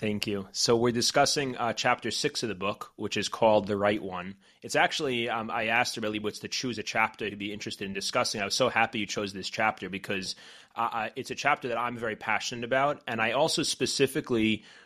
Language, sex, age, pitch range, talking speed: English, male, 30-49, 100-120 Hz, 220 wpm